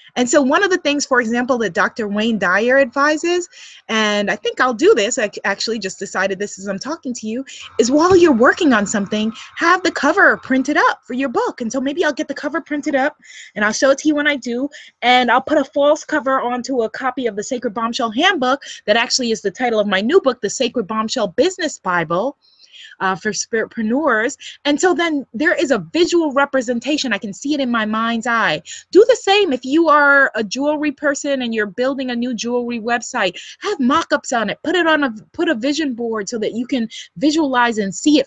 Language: English